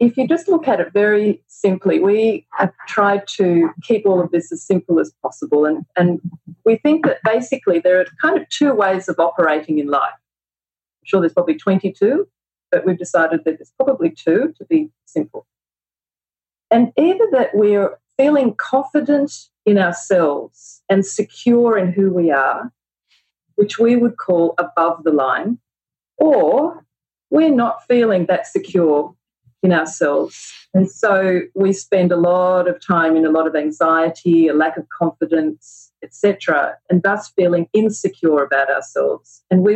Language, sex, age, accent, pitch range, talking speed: English, female, 40-59, Australian, 160-210 Hz, 160 wpm